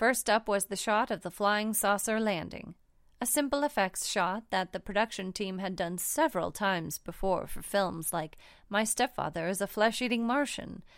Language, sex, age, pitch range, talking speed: English, female, 30-49, 185-230 Hz, 175 wpm